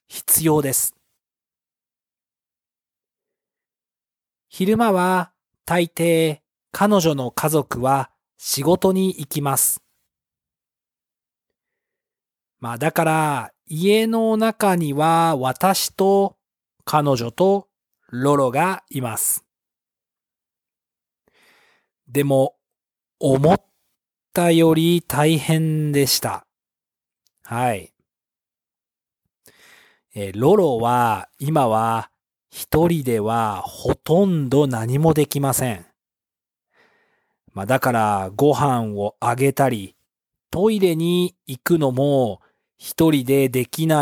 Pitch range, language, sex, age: 125-170 Hz, English, male, 40-59